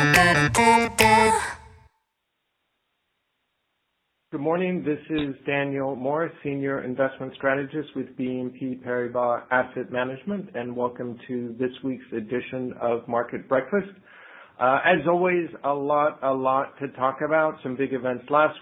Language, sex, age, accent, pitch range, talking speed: English, male, 50-69, American, 125-150 Hz, 120 wpm